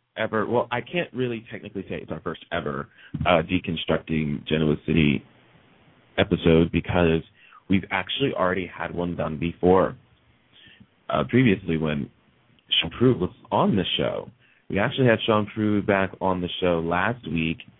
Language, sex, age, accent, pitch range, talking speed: English, male, 30-49, American, 80-100 Hz, 145 wpm